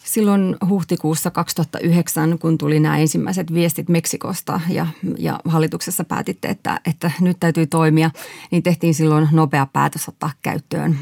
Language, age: Finnish, 30-49